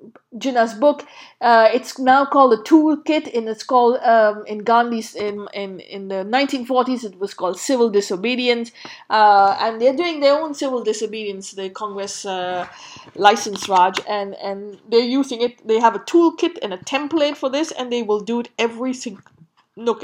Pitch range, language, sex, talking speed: 200-255 Hz, English, female, 175 wpm